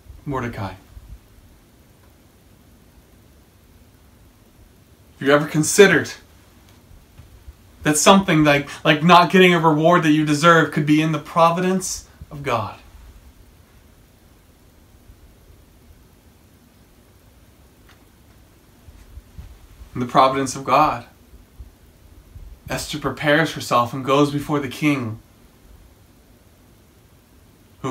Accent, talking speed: American, 80 wpm